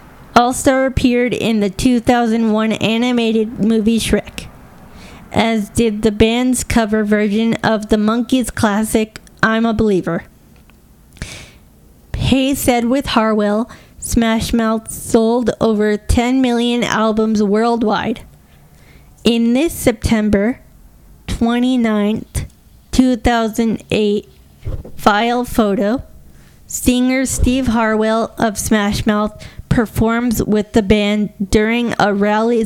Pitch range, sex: 210-235 Hz, female